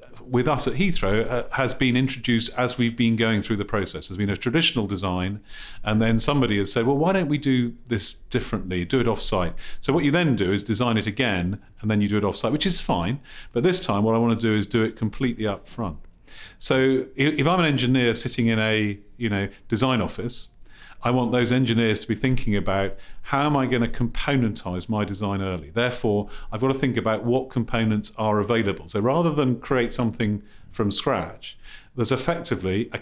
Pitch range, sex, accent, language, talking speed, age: 105-130 Hz, male, British, English, 210 wpm, 40-59